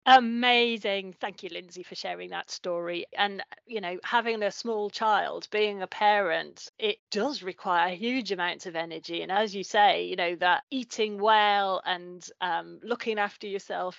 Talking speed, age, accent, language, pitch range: 165 wpm, 30-49, British, English, 195-240 Hz